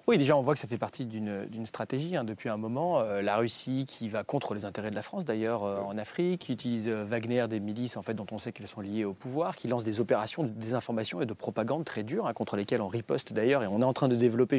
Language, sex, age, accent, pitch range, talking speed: French, male, 30-49, French, 120-160 Hz, 270 wpm